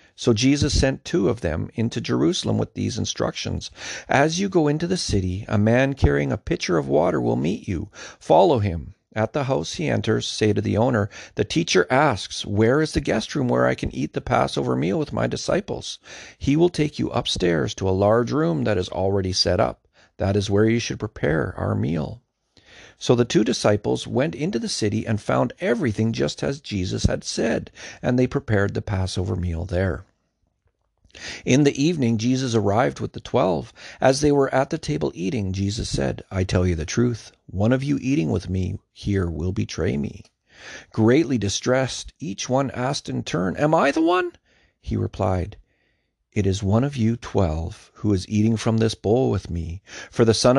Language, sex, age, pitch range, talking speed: English, male, 40-59, 95-130 Hz, 195 wpm